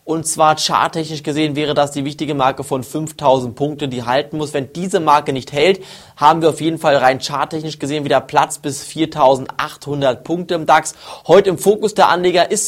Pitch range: 140-160 Hz